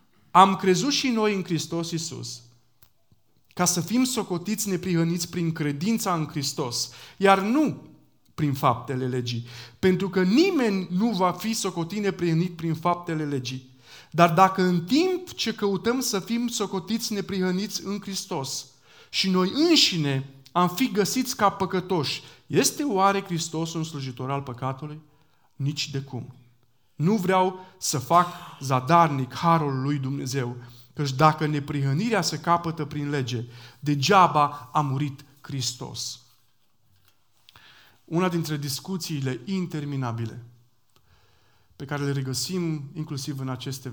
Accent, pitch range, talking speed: native, 125-180 Hz, 125 wpm